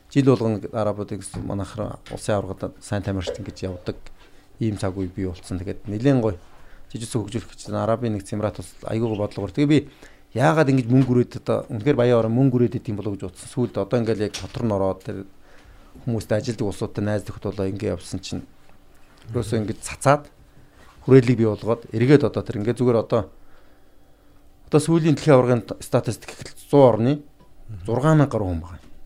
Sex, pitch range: male, 95-120 Hz